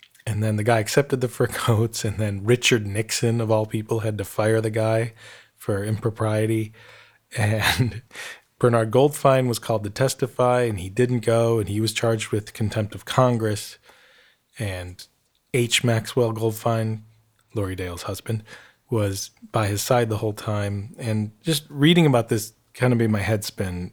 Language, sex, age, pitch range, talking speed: English, male, 20-39, 105-120 Hz, 165 wpm